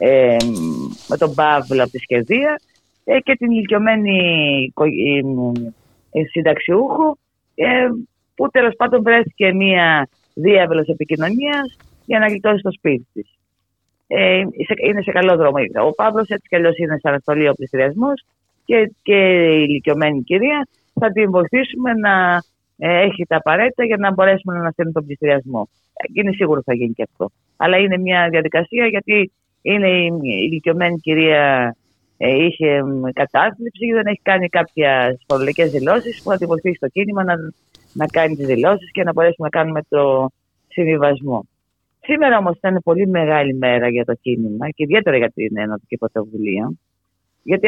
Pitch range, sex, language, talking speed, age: 135-205 Hz, female, Greek, 150 wpm, 30-49